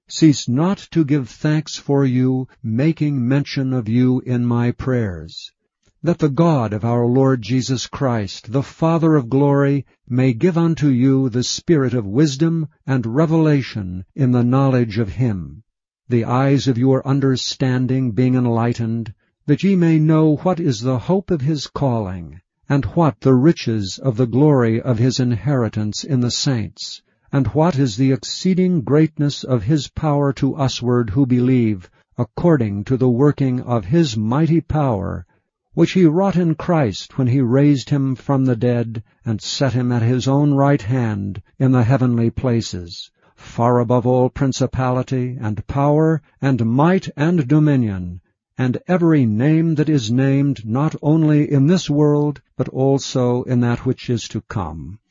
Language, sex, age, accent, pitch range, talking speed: English, male, 60-79, American, 120-145 Hz, 160 wpm